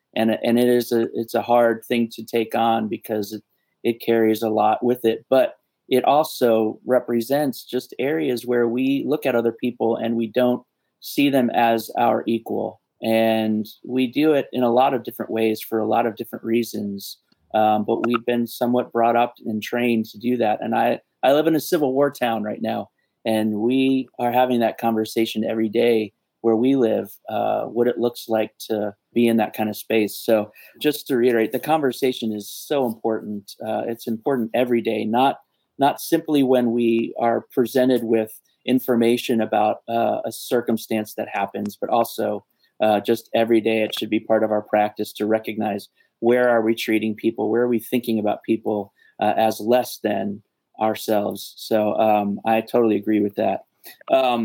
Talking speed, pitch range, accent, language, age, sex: 185 wpm, 110-120 Hz, American, English, 30-49, male